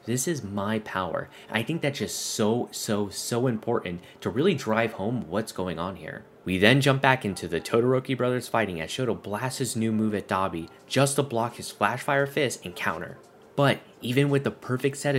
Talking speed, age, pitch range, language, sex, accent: 205 wpm, 20-39, 100-130 Hz, English, male, American